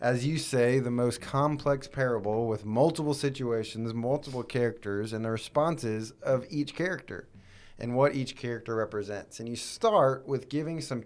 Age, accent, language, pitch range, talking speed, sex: 30-49, American, English, 105-125 Hz, 155 wpm, male